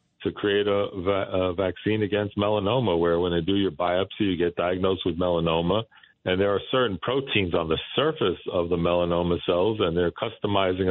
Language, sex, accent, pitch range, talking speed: English, male, American, 90-100 Hz, 180 wpm